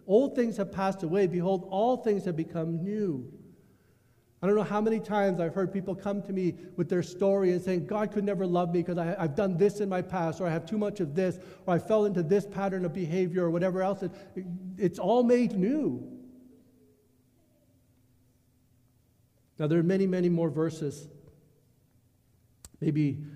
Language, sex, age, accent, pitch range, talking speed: English, male, 60-79, American, 135-185 Hz, 185 wpm